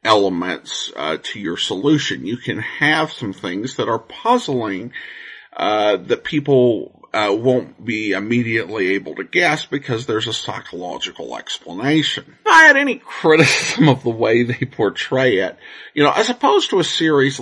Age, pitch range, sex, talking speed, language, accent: 50-69, 130-180 Hz, male, 160 wpm, English, American